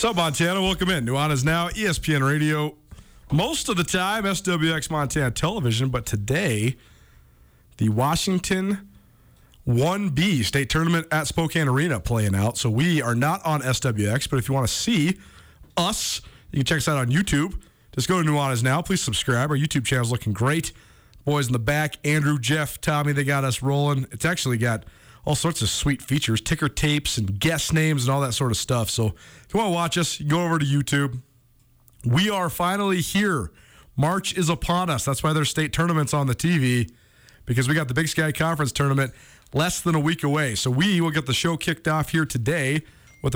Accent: American